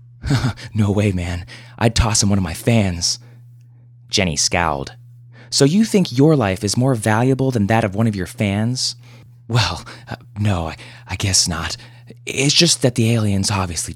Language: English